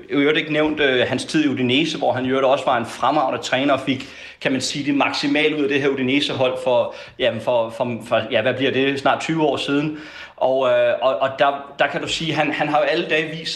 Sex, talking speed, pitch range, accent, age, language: male, 255 wpm, 135-160 Hz, native, 30-49, Danish